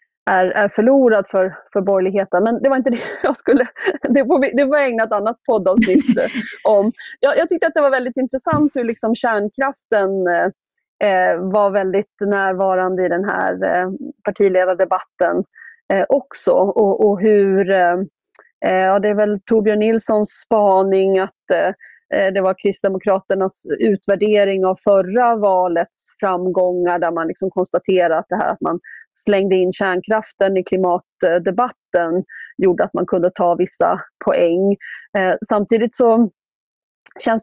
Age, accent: 30-49, native